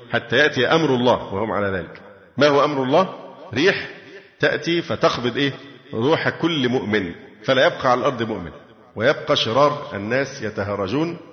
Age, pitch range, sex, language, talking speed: 50-69, 110-145 Hz, male, Arabic, 145 wpm